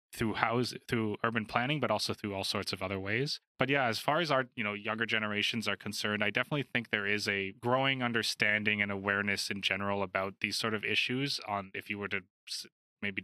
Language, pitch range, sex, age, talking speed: English, 100-115 Hz, male, 20-39, 220 wpm